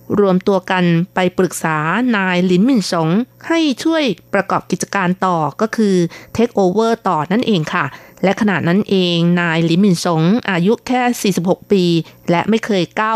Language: Thai